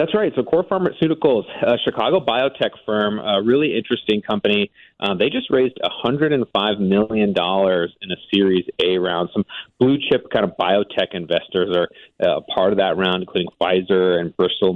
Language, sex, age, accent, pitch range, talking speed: English, male, 30-49, American, 95-120 Hz, 170 wpm